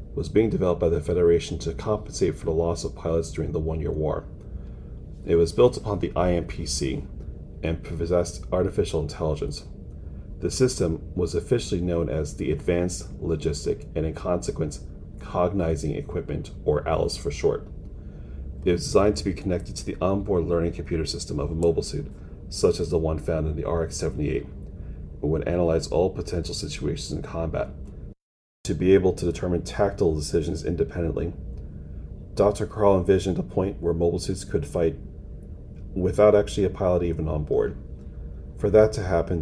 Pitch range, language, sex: 80-90 Hz, English, male